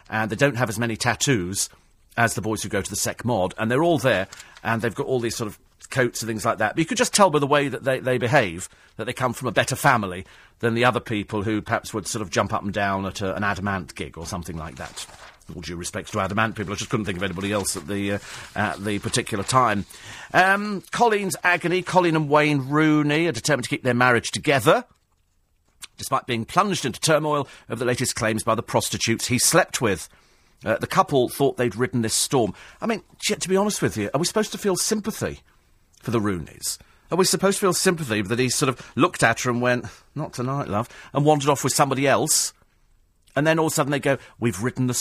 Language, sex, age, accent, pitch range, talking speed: English, male, 40-59, British, 105-150 Hz, 235 wpm